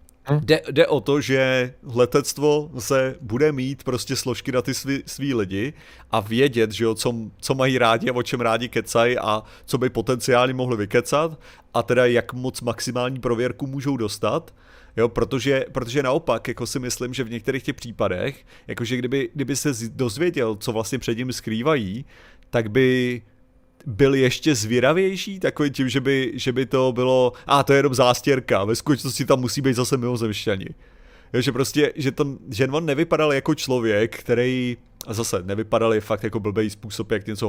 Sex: male